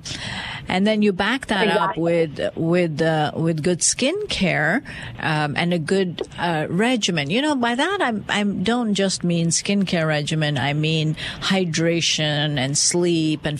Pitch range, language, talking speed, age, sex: 155-190 Hz, English, 160 wpm, 50-69, female